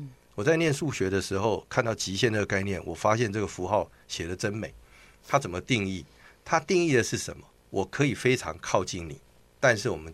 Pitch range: 70-110 Hz